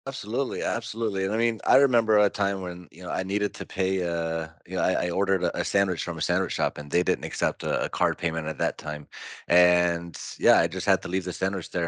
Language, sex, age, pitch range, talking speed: English, male, 30-49, 85-95 Hz, 250 wpm